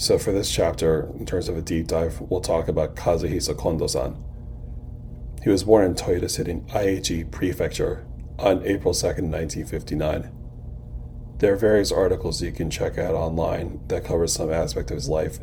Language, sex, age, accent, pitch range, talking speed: English, male, 30-49, American, 75-90 Hz, 165 wpm